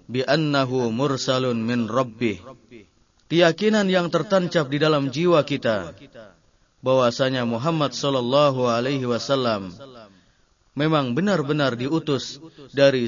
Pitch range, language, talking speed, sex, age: 120-150 Hz, Indonesian, 95 wpm, male, 30-49